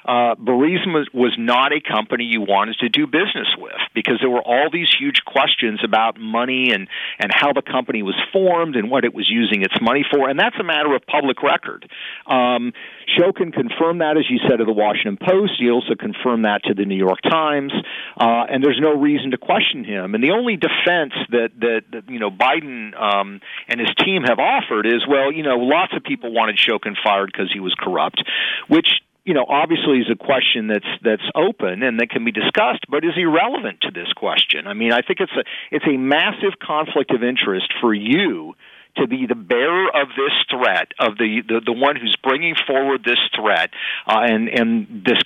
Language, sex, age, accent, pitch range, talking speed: English, male, 40-59, American, 115-155 Hz, 210 wpm